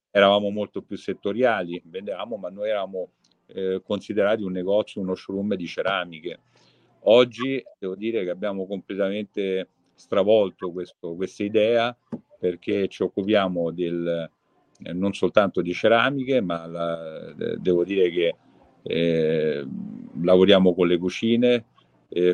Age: 50-69